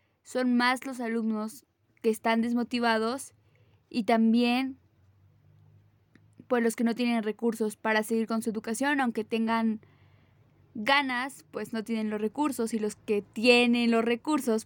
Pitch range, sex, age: 210-240 Hz, female, 20-39